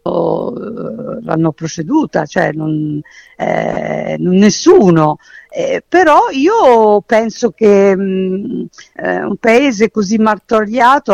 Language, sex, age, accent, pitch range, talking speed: Italian, female, 50-69, native, 175-230 Hz, 85 wpm